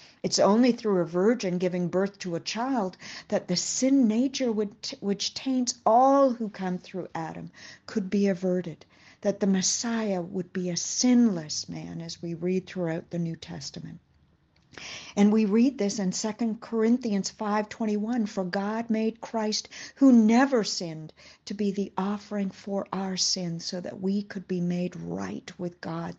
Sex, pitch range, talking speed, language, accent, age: female, 180-225 Hz, 160 wpm, English, American, 60-79